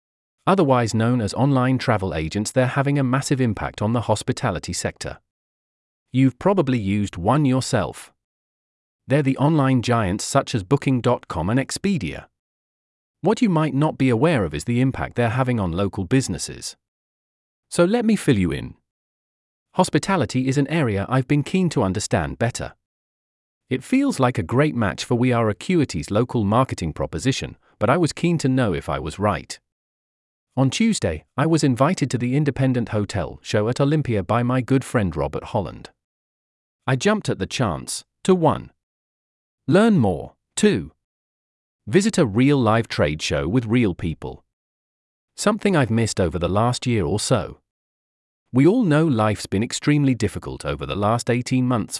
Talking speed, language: 165 wpm, English